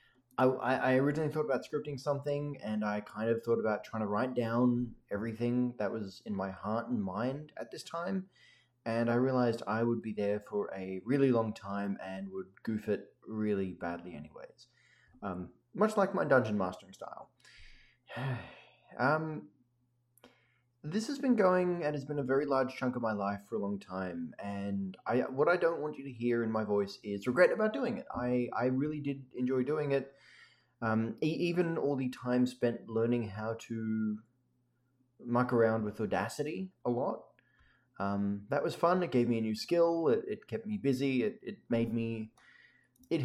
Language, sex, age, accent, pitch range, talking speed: English, male, 20-39, Australian, 110-140 Hz, 185 wpm